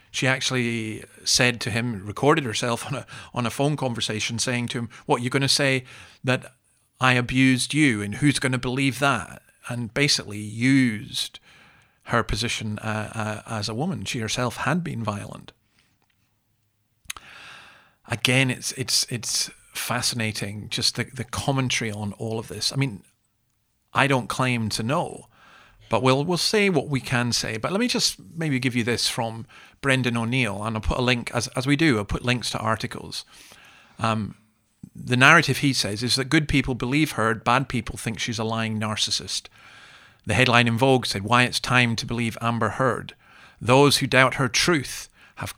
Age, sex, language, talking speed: 40-59, male, English, 180 wpm